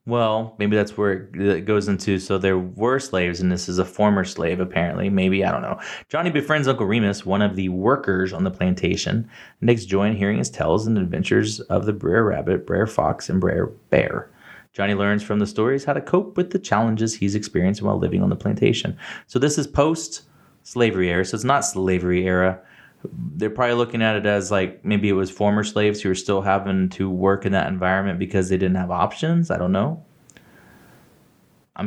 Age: 20-39